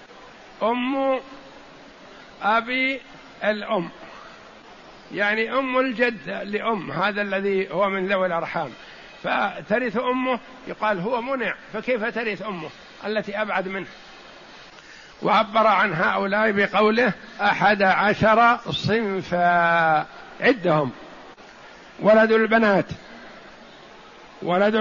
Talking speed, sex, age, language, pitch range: 85 wpm, male, 60-79, Arabic, 195-230 Hz